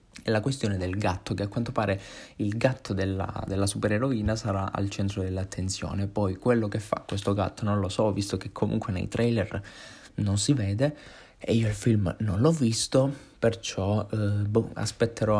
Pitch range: 100-125 Hz